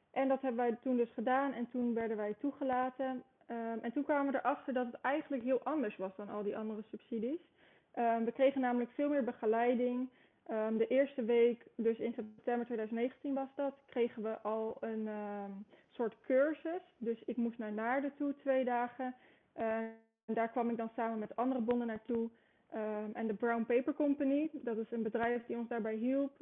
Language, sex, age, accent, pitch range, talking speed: Dutch, female, 20-39, Dutch, 220-265 Hz, 180 wpm